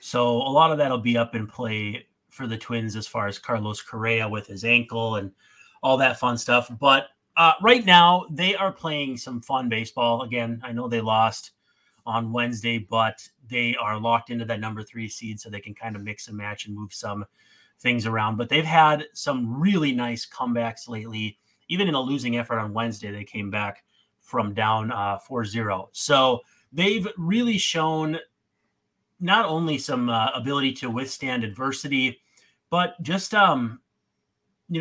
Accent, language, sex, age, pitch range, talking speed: American, English, male, 30-49, 115-150 Hz, 180 wpm